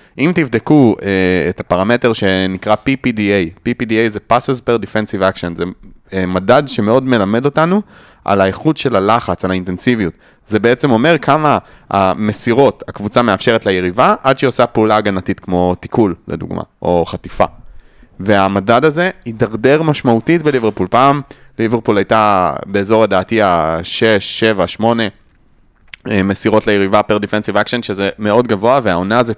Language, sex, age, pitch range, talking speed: Hebrew, male, 30-49, 95-125 Hz, 135 wpm